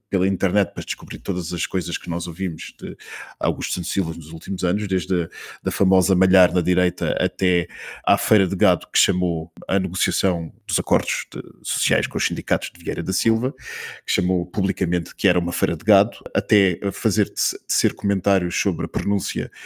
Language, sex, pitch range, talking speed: Portuguese, male, 90-115 Hz, 185 wpm